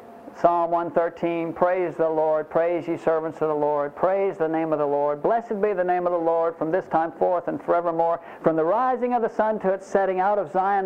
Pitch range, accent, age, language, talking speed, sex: 160-215 Hz, American, 50-69, English, 230 wpm, male